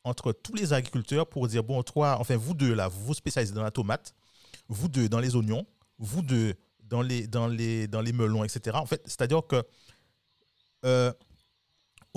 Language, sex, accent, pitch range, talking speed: French, male, French, 105-130 Hz, 185 wpm